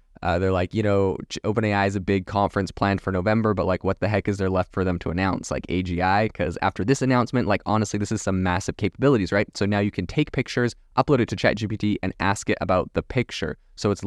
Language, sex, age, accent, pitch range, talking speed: English, male, 20-39, American, 90-105 Hz, 245 wpm